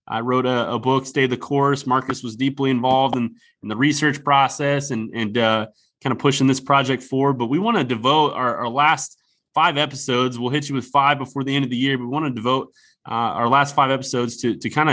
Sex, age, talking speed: male, 20-39, 240 wpm